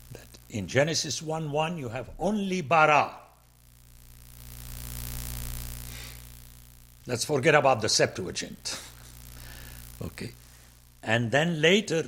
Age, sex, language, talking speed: 60-79, male, English, 85 wpm